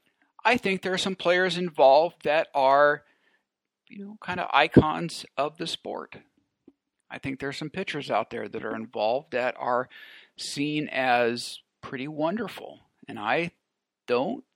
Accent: American